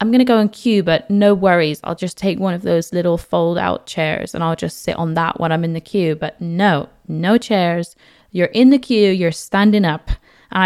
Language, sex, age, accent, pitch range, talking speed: English, female, 20-39, British, 165-215 Hz, 235 wpm